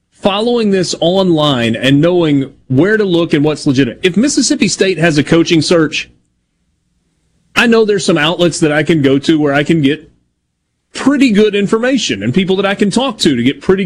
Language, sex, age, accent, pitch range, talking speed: English, male, 30-49, American, 140-200 Hz, 195 wpm